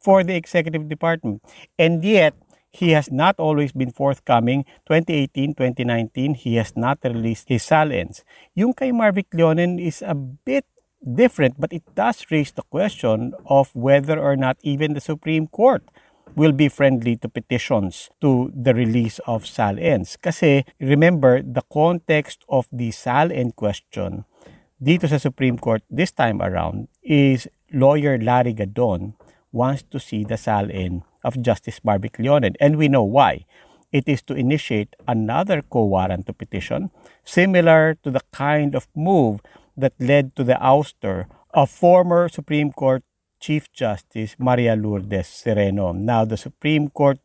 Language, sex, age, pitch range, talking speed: English, male, 50-69, 120-155 Hz, 145 wpm